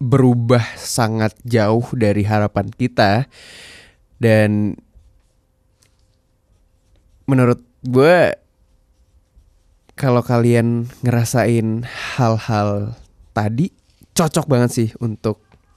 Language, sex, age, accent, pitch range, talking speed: Indonesian, male, 20-39, native, 105-120 Hz, 70 wpm